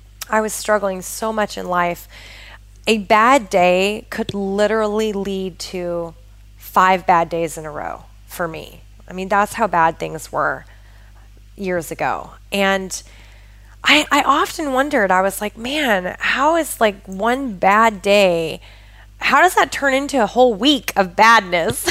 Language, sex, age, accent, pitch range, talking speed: English, female, 20-39, American, 185-235 Hz, 155 wpm